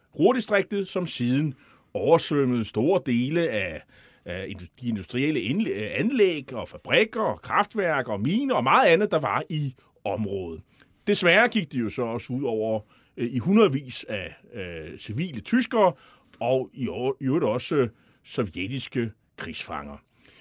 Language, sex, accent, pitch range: Danish, male, native, 120-170 Hz